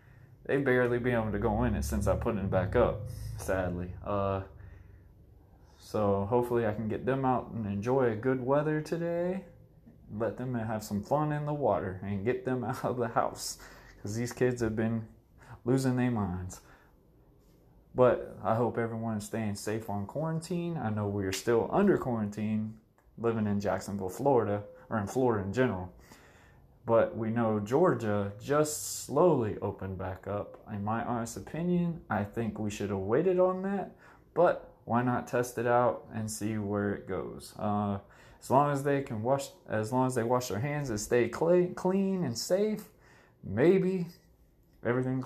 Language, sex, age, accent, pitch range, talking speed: English, male, 20-39, American, 105-130 Hz, 175 wpm